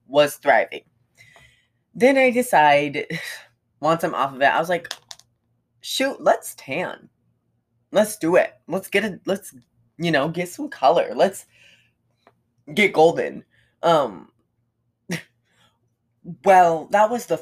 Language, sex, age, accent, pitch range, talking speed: English, female, 20-39, American, 135-195 Hz, 125 wpm